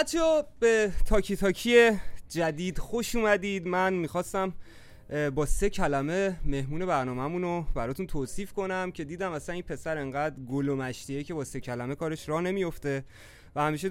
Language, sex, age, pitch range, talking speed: Persian, male, 30-49, 125-175 Hz, 145 wpm